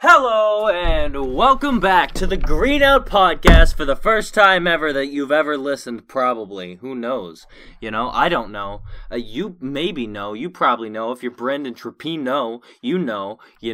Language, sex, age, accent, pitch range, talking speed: English, male, 20-39, American, 110-155 Hz, 170 wpm